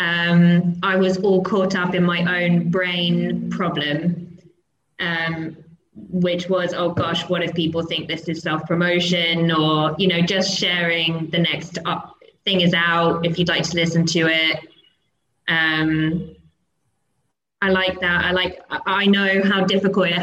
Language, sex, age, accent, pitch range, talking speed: English, female, 20-39, British, 170-185 Hz, 155 wpm